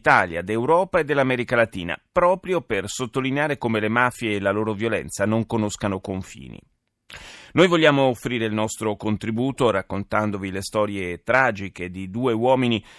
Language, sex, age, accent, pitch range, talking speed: Italian, male, 30-49, native, 105-135 Hz, 145 wpm